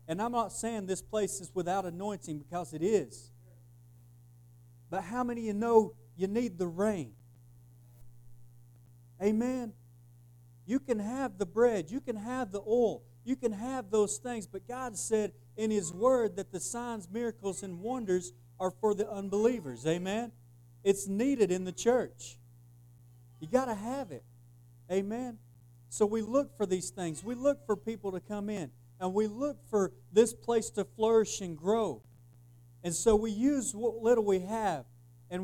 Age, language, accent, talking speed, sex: 40-59, English, American, 165 wpm, male